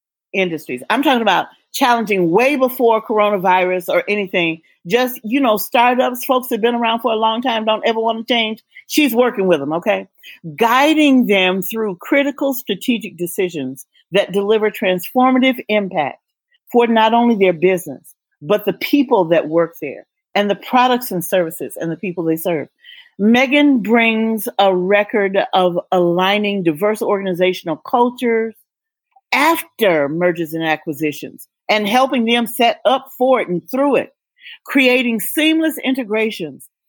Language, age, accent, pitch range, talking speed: English, 40-59, American, 195-270 Hz, 145 wpm